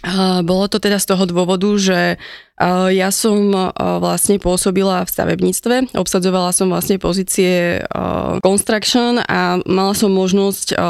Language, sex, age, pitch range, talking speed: Slovak, female, 20-39, 180-205 Hz, 120 wpm